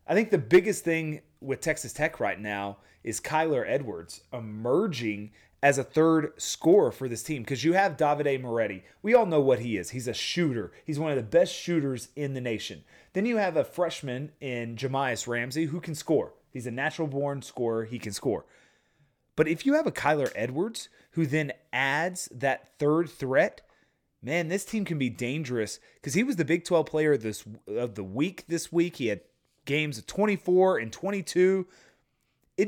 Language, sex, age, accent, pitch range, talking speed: English, male, 30-49, American, 120-170 Hz, 185 wpm